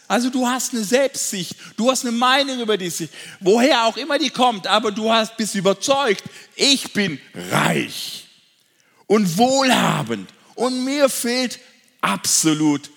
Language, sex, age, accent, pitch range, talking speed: German, male, 50-69, German, 185-255 Hz, 140 wpm